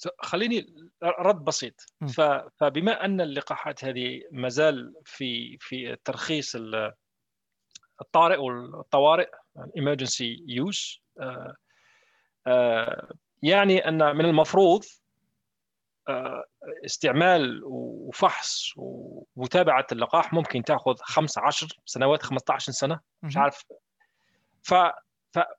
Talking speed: 75 wpm